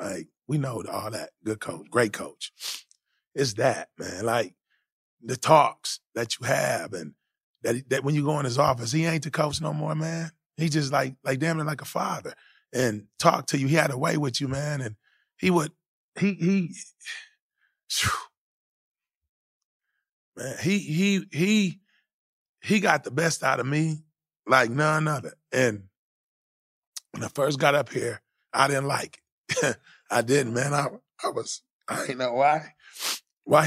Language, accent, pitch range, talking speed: English, American, 130-160 Hz, 170 wpm